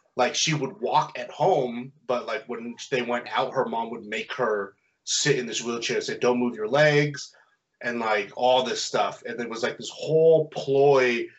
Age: 30-49